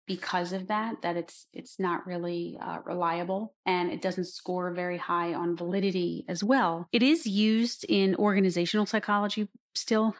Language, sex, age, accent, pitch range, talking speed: English, female, 30-49, American, 170-195 Hz, 160 wpm